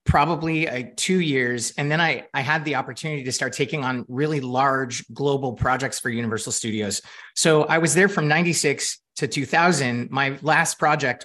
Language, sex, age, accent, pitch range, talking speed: English, male, 30-49, American, 125-160 Hz, 175 wpm